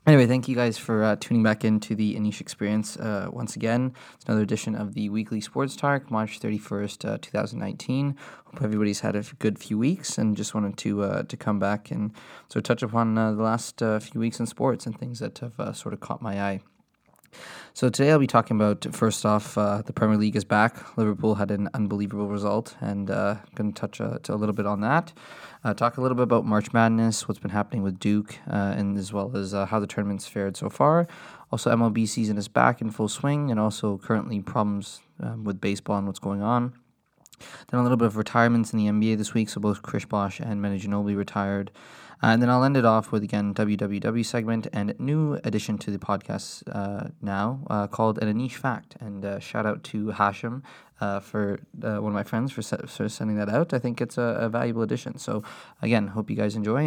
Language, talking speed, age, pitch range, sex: English, 230 wpm, 20-39, 105-115 Hz, male